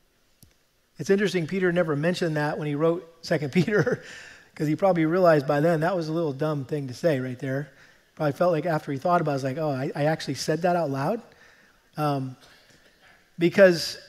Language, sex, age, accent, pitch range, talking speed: English, male, 40-59, American, 150-195 Hz, 205 wpm